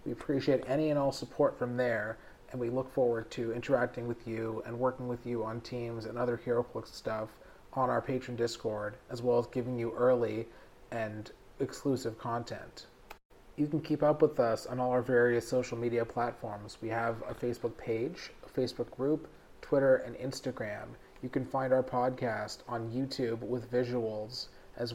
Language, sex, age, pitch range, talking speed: English, male, 30-49, 115-130 Hz, 175 wpm